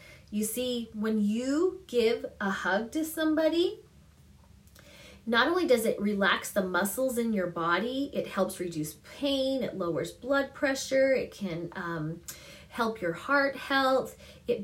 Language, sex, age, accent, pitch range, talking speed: English, female, 30-49, American, 200-300 Hz, 145 wpm